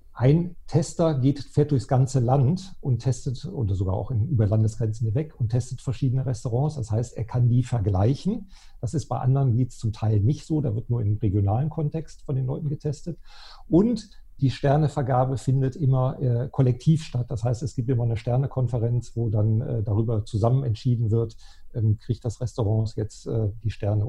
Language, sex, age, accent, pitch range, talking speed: German, male, 50-69, German, 110-140 Hz, 180 wpm